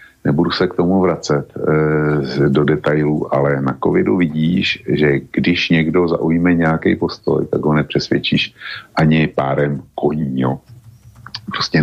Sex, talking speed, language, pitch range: male, 125 wpm, Slovak, 75-95 Hz